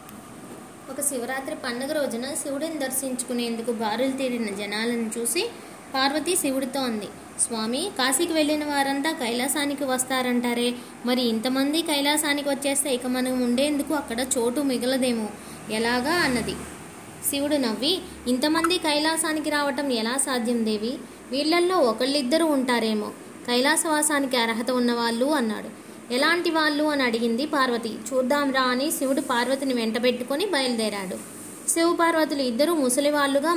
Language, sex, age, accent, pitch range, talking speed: Telugu, female, 20-39, native, 250-295 Hz, 110 wpm